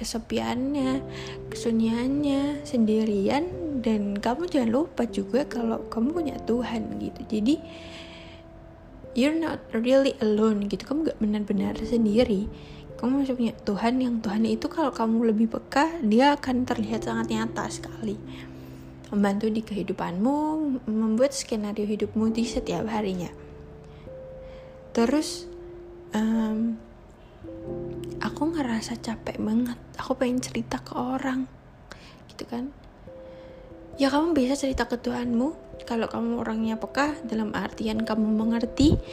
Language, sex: Indonesian, female